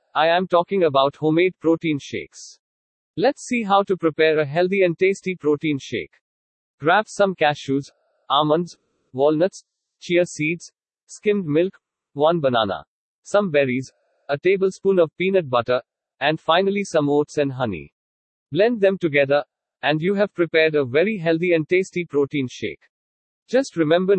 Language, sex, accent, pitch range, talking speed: English, male, Indian, 145-185 Hz, 145 wpm